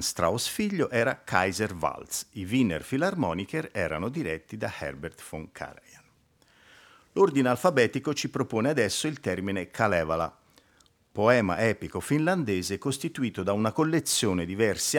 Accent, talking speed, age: native, 125 wpm, 50-69